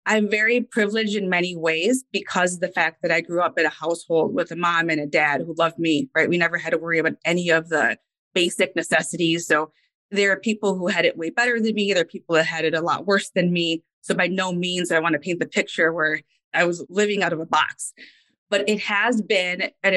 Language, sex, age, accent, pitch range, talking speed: English, female, 20-39, American, 165-200 Hz, 250 wpm